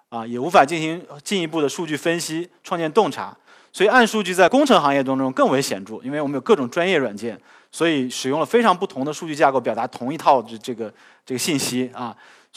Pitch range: 130-180 Hz